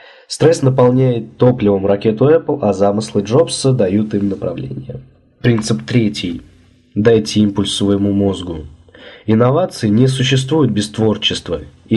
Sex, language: male, Russian